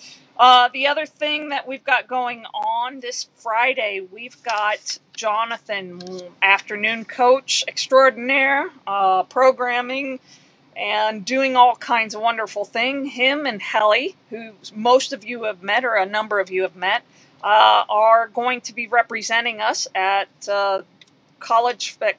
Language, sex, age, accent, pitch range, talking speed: English, female, 40-59, American, 205-245 Hz, 140 wpm